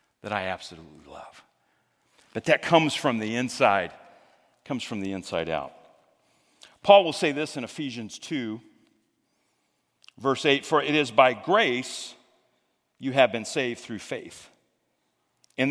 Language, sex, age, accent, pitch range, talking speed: English, male, 40-59, American, 110-150 Hz, 140 wpm